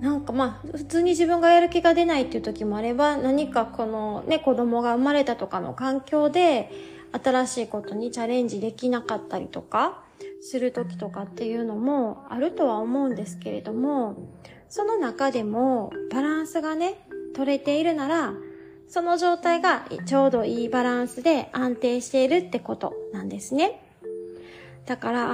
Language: Japanese